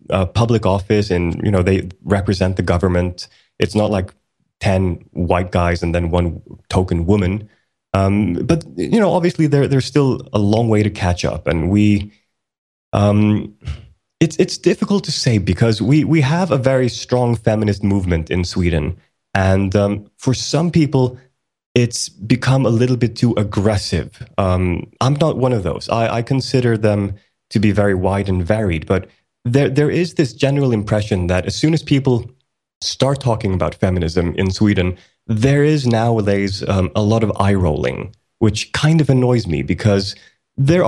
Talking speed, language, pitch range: 170 wpm, English, 95-130 Hz